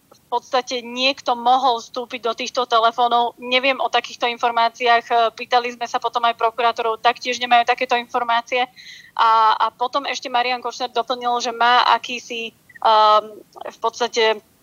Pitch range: 230-255 Hz